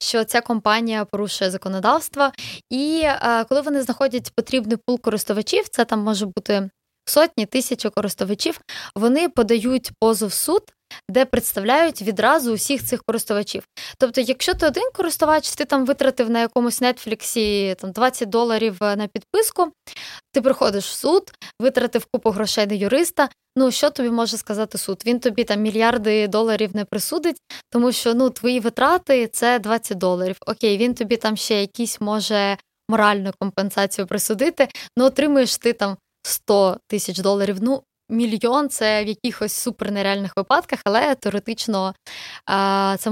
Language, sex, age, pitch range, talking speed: Ukrainian, female, 20-39, 210-260 Hz, 145 wpm